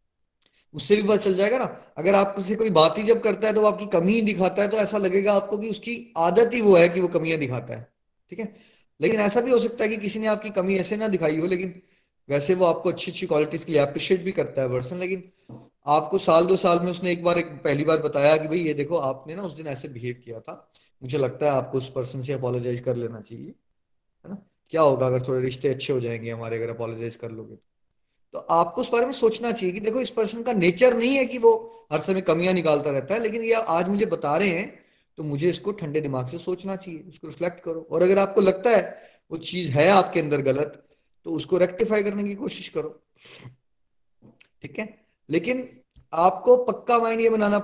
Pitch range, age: 145-205 Hz, 20-39